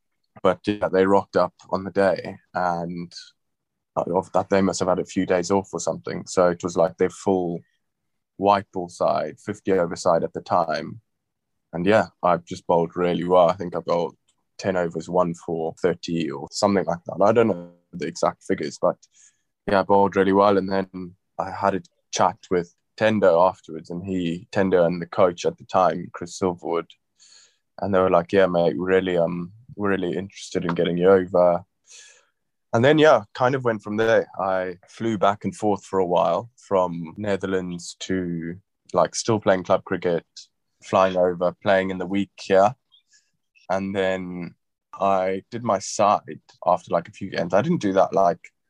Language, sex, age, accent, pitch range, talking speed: English, male, 20-39, British, 90-100 Hz, 185 wpm